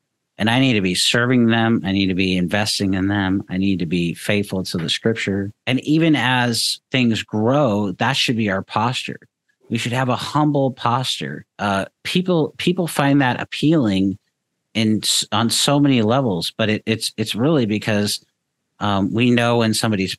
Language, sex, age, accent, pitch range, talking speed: English, male, 50-69, American, 95-120 Hz, 180 wpm